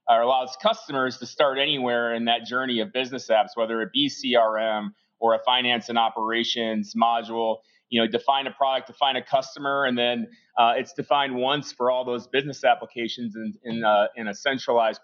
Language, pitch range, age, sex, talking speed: English, 115-135 Hz, 30-49, male, 185 wpm